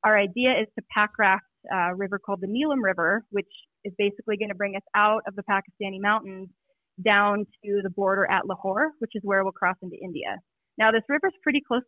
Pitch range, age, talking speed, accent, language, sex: 195-220 Hz, 20-39, 215 wpm, American, English, female